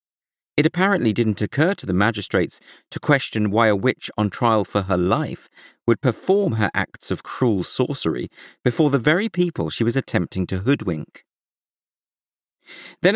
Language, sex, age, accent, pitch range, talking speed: English, male, 40-59, British, 95-140 Hz, 155 wpm